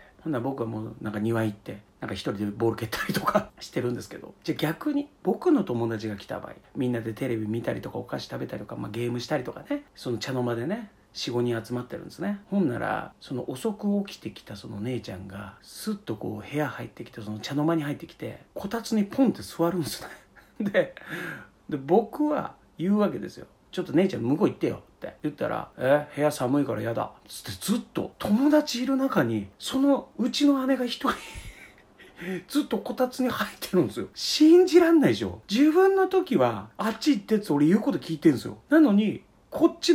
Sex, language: male, Japanese